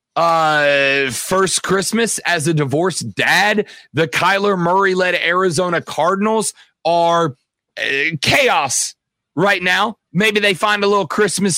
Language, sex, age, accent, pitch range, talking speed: English, male, 30-49, American, 170-205 Hz, 120 wpm